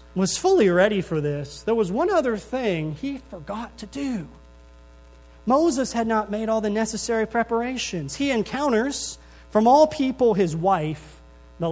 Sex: male